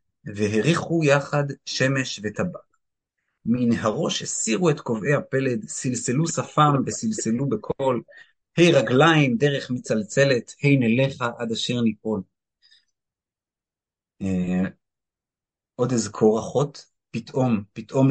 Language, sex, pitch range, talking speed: Hebrew, male, 110-145 Hz, 105 wpm